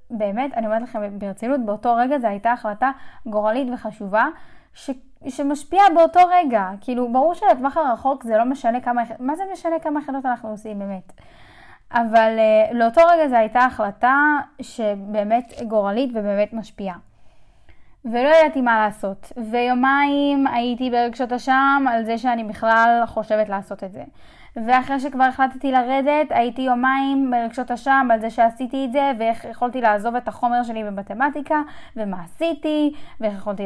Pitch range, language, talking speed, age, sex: 215-275 Hz, Hebrew, 150 wpm, 10-29, female